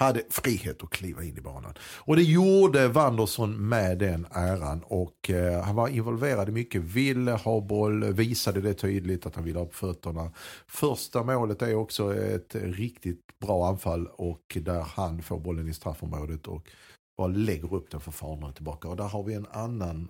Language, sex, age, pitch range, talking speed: Swedish, male, 50-69, 85-115 Hz, 180 wpm